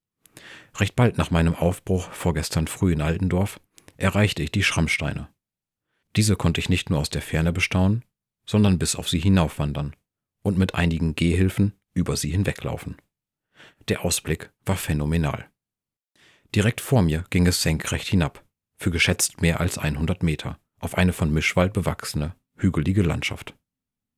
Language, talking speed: German, 145 wpm